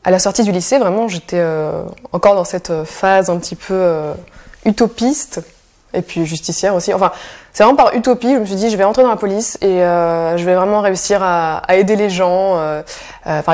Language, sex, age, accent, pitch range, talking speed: French, female, 20-39, French, 170-205 Hz, 220 wpm